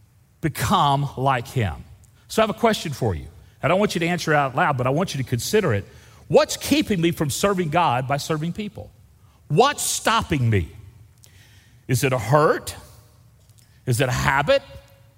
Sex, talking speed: male, 180 wpm